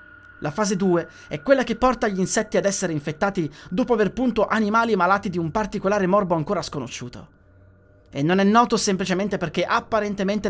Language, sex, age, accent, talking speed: Italian, male, 30-49, native, 170 wpm